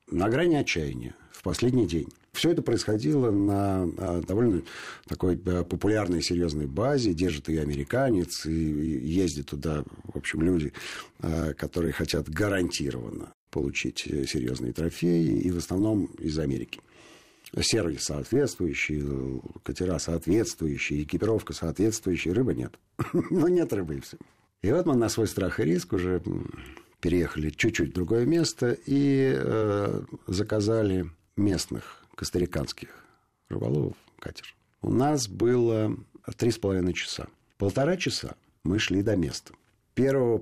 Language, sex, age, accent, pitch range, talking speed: Russian, male, 50-69, native, 85-115 Hz, 125 wpm